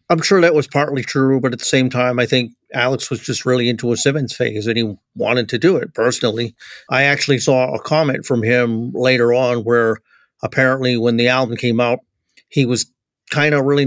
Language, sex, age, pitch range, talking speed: English, male, 40-59, 115-135 Hz, 210 wpm